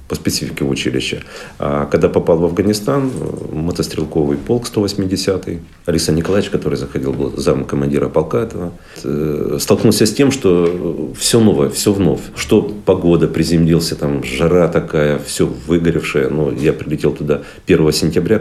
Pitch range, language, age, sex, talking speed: 70-90 Hz, Russian, 40-59, male, 135 wpm